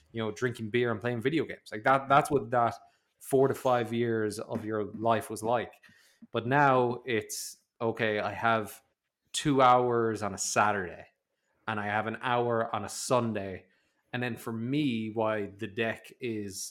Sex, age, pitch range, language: male, 20-39, 110-125 Hz, English